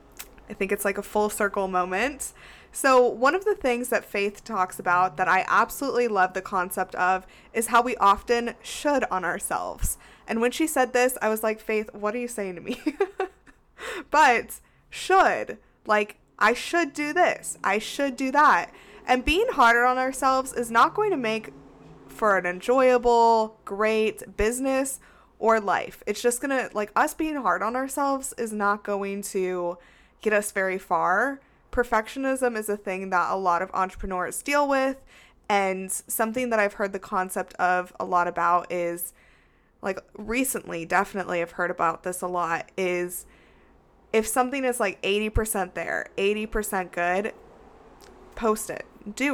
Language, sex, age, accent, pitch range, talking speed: English, female, 20-39, American, 190-250 Hz, 165 wpm